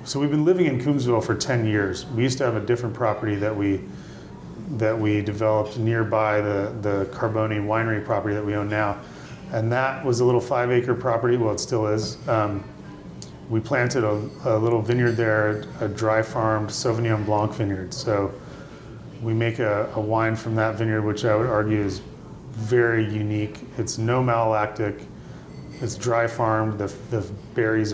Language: English